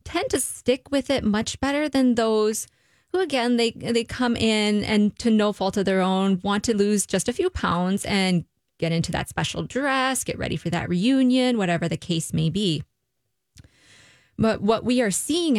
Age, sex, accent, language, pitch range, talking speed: 20-39, female, American, English, 175-225 Hz, 195 wpm